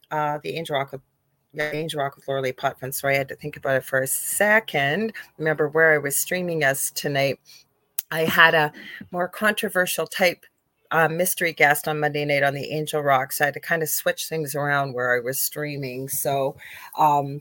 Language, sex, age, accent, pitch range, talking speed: English, female, 40-59, American, 145-185 Hz, 205 wpm